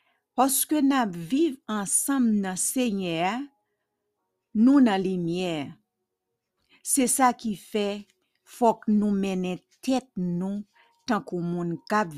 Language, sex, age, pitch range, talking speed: English, female, 50-69, 165-230 Hz, 120 wpm